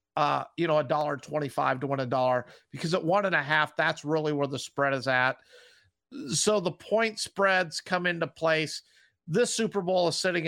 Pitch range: 150-185 Hz